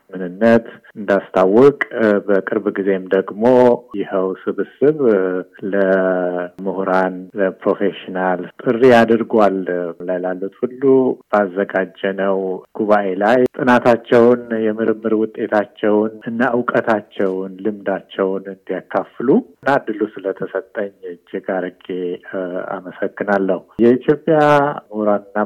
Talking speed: 85 wpm